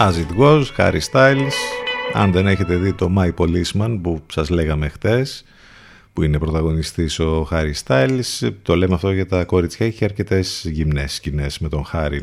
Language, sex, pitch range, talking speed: Greek, male, 80-120 Hz, 165 wpm